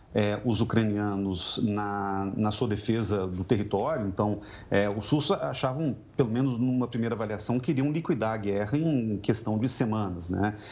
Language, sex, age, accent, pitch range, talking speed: Portuguese, male, 40-59, Brazilian, 105-135 Hz, 155 wpm